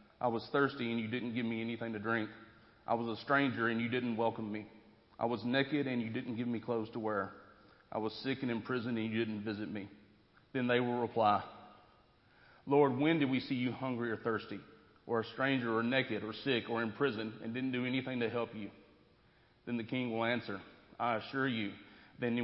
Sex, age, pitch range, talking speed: male, 40-59, 110-125 Hz, 215 wpm